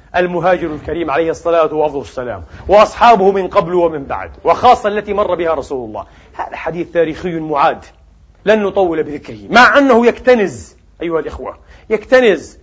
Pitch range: 170-230 Hz